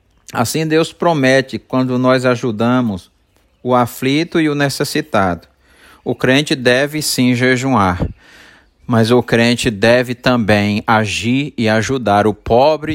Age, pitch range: 50-69, 105-125 Hz